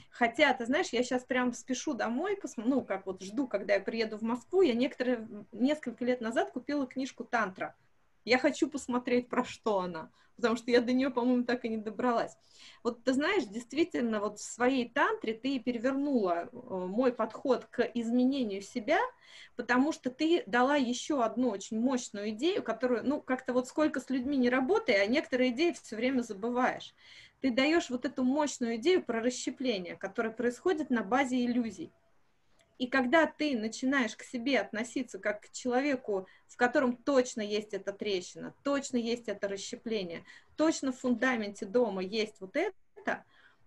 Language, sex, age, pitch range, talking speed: Russian, female, 20-39, 220-265 Hz, 165 wpm